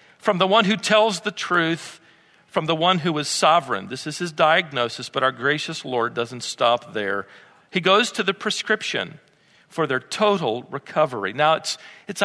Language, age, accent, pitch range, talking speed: English, 50-69, American, 155-230 Hz, 175 wpm